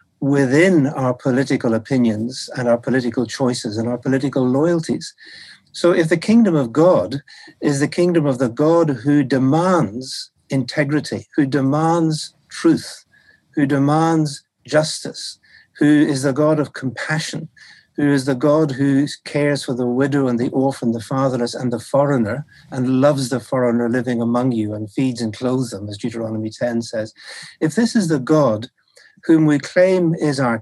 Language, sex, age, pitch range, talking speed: English, male, 60-79, 125-155 Hz, 160 wpm